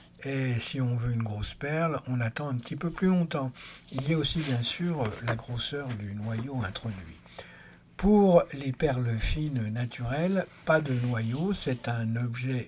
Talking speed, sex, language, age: 170 wpm, male, French, 60-79